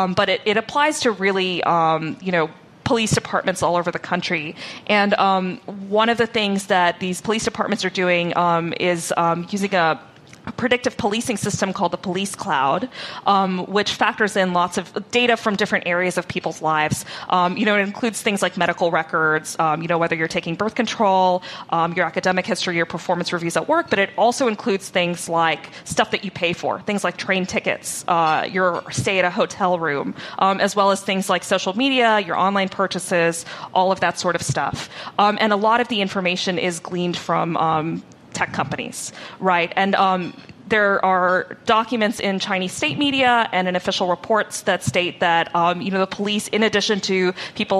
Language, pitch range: English, 175-205 Hz